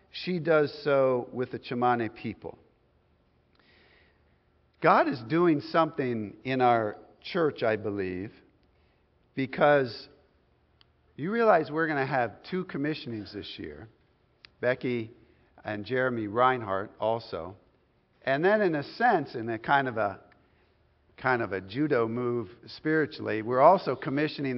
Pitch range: 115-150 Hz